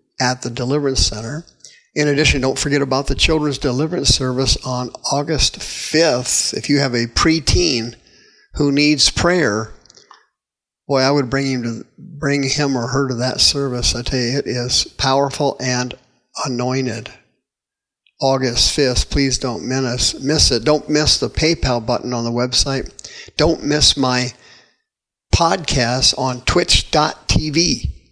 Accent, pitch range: American, 125-145 Hz